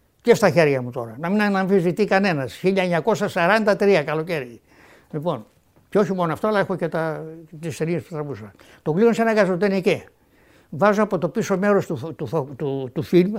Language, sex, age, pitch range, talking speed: Greek, male, 60-79, 160-210 Hz, 160 wpm